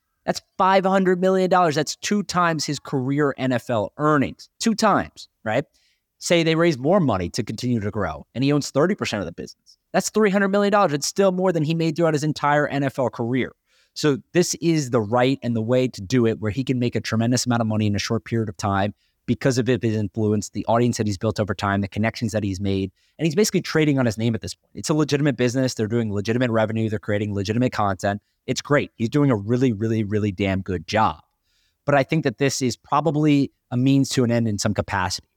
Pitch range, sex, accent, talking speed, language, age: 105-135 Hz, male, American, 225 wpm, English, 30-49